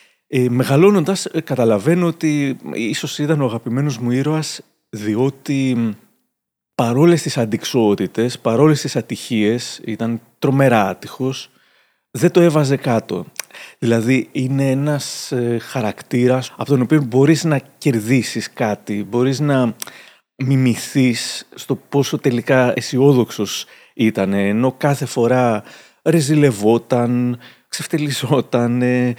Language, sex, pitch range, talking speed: Greek, male, 120-155 Hz, 100 wpm